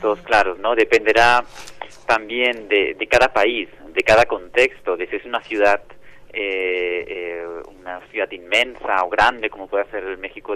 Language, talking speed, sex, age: Spanish, 165 wpm, male, 30-49